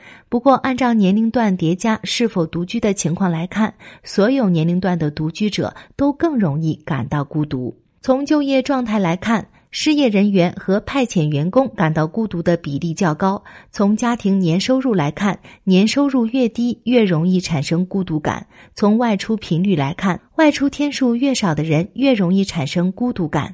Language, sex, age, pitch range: Chinese, female, 30-49, 170-250 Hz